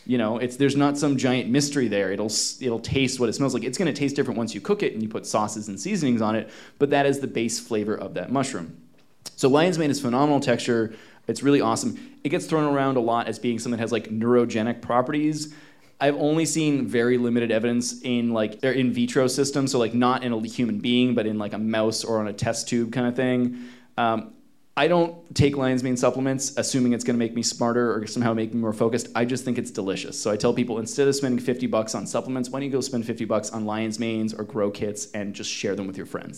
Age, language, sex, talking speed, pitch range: 20-39, English, male, 250 wpm, 115-140 Hz